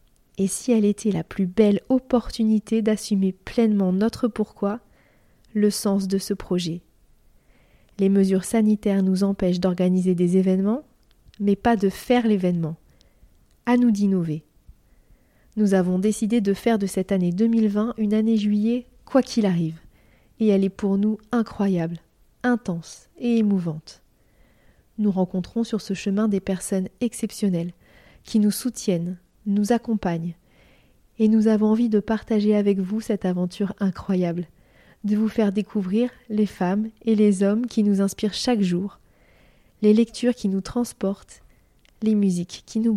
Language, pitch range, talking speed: French, 190-225 Hz, 145 wpm